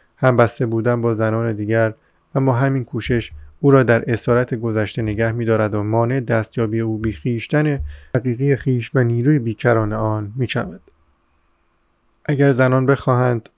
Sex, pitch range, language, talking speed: male, 110-125 Hz, Persian, 140 wpm